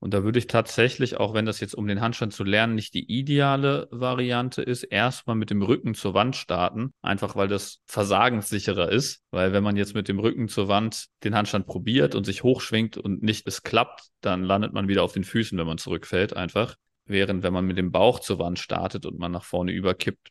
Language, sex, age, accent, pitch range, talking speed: German, male, 30-49, German, 95-115 Hz, 220 wpm